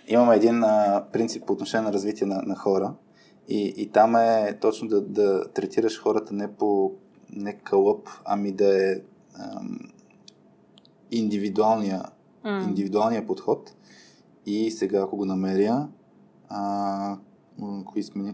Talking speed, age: 120 wpm, 20-39